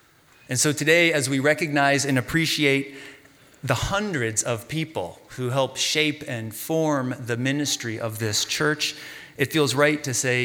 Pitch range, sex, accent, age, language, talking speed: 110-140 Hz, male, American, 30-49, English, 155 wpm